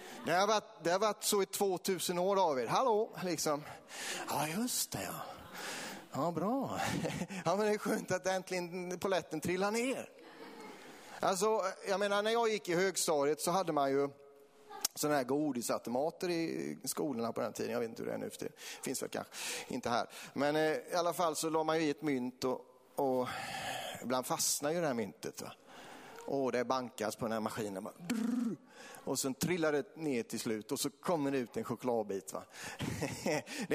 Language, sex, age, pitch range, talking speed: Swedish, male, 30-49, 150-210 Hz, 190 wpm